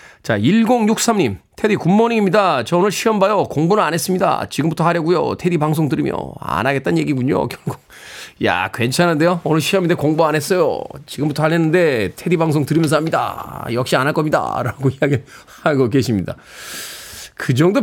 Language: Korean